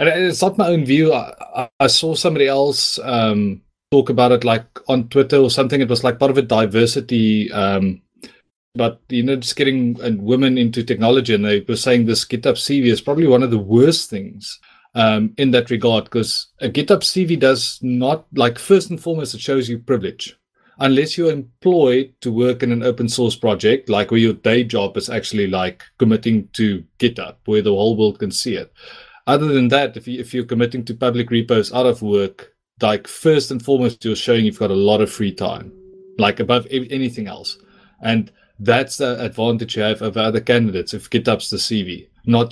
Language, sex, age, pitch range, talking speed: English, male, 30-49, 110-135 Hz, 200 wpm